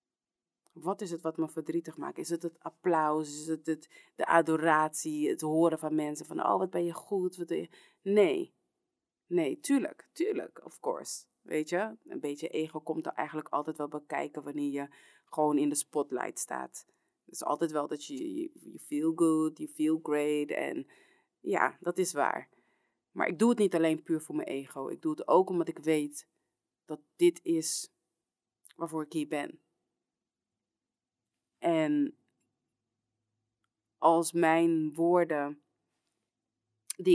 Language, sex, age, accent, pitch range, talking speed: English, female, 30-49, Dutch, 145-170 Hz, 160 wpm